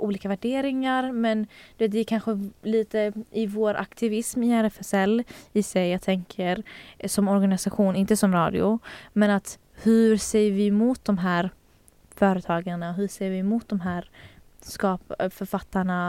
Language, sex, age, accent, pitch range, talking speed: Swedish, female, 20-39, native, 190-220 Hz, 140 wpm